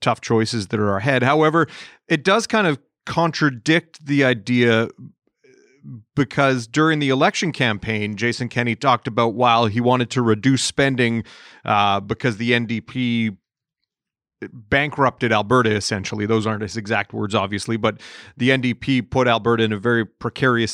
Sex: male